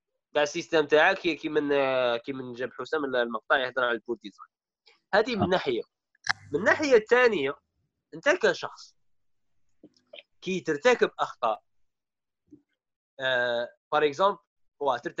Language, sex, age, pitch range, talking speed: Arabic, male, 20-39, 145-205 Hz, 100 wpm